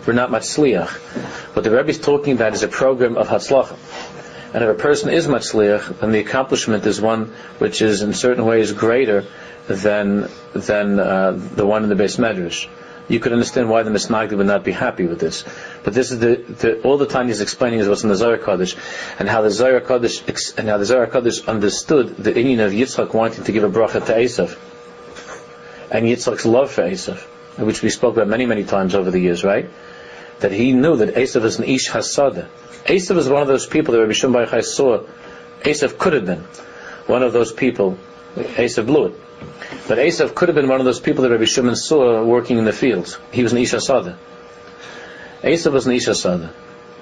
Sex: male